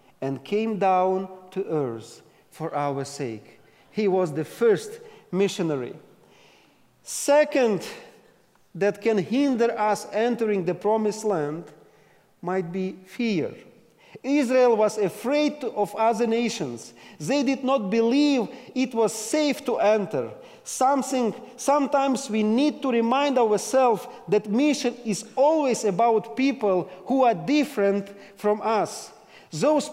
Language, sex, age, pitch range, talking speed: English, male, 40-59, 185-255 Hz, 120 wpm